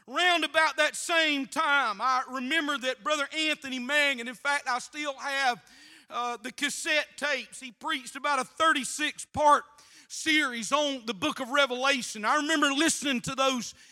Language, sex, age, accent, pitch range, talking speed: English, male, 40-59, American, 245-295 Hz, 160 wpm